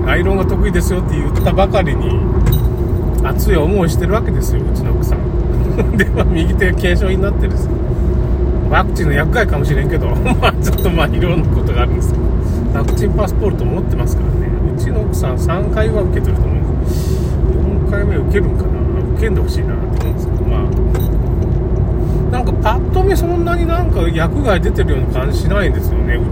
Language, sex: Japanese, male